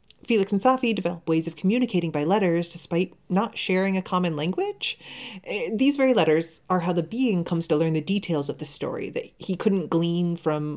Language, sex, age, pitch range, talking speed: English, female, 30-49, 170-235 Hz, 195 wpm